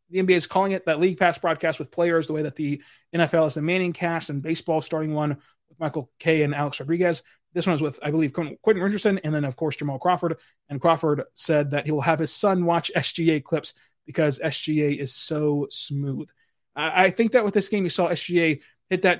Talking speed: 225 wpm